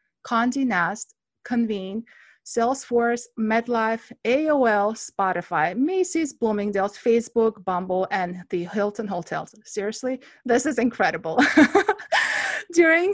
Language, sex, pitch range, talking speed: English, female, 200-250 Hz, 90 wpm